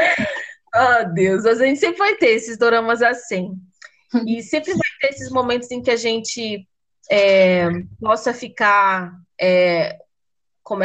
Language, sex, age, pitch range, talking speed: Portuguese, female, 20-39, 200-275 Hz, 145 wpm